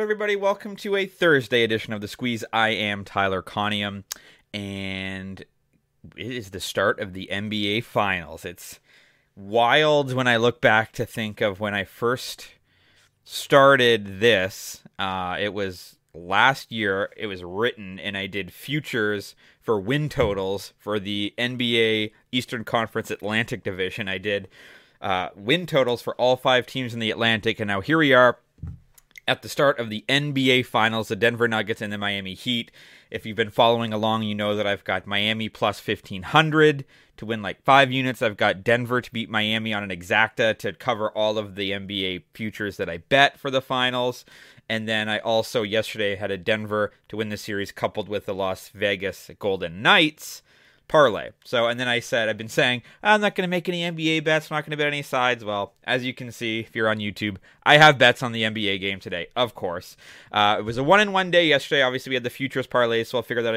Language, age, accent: English, 30-49, American